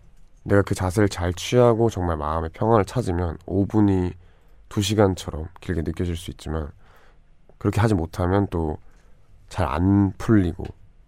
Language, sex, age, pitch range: Korean, male, 20-39, 80-105 Hz